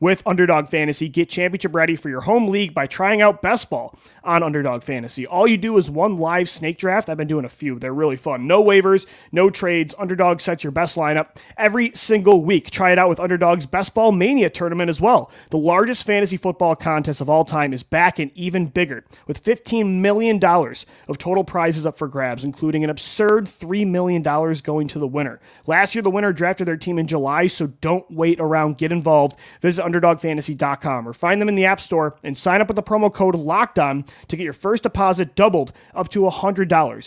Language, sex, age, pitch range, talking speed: English, male, 30-49, 155-190 Hz, 215 wpm